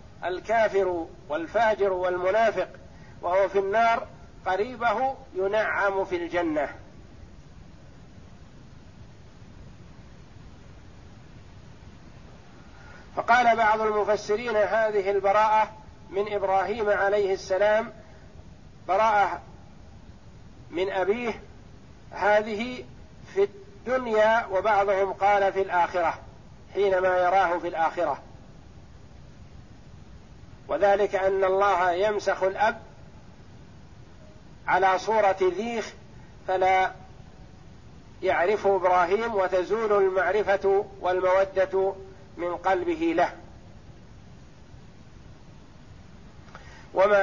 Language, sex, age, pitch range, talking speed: Arabic, male, 50-69, 180-210 Hz, 65 wpm